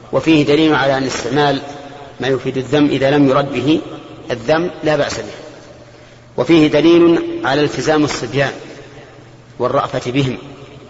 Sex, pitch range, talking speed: male, 125-150 Hz, 125 wpm